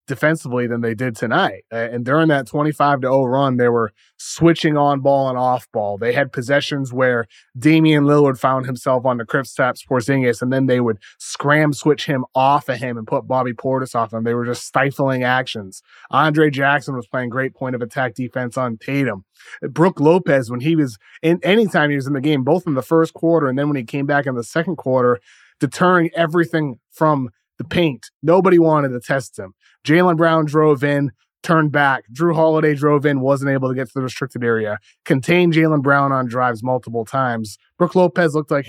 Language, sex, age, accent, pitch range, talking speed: English, male, 30-49, American, 125-155 Hz, 200 wpm